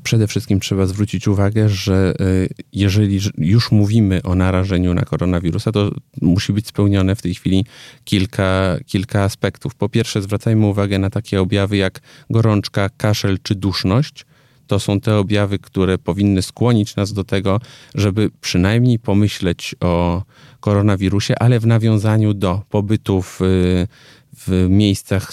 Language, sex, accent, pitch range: Polish, male, native, 95-110 Hz